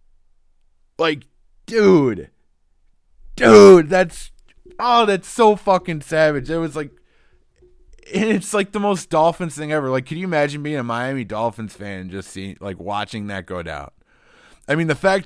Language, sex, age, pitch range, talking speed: English, male, 20-39, 100-165 Hz, 155 wpm